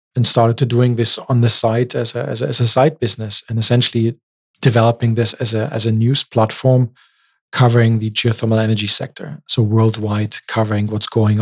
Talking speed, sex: 190 wpm, male